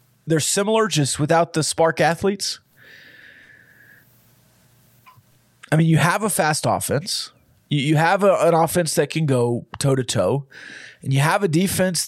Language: English